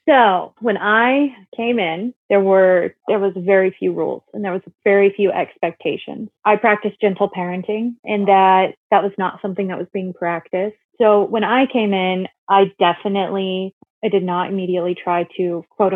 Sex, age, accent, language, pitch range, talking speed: female, 30-49, American, English, 185-220 Hz, 175 wpm